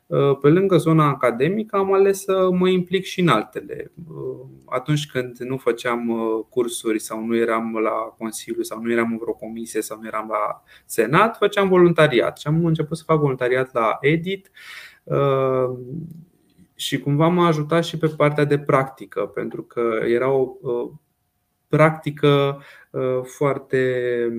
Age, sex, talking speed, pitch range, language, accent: 20-39, male, 140 wpm, 120-165 Hz, Romanian, native